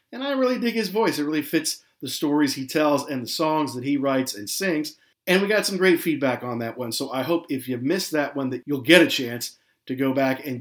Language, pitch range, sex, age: English, 135-190 Hz, male, 50-69